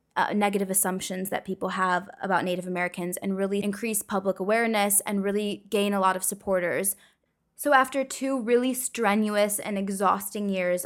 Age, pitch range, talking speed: 20-39, 190-225 Hz, 160 wpm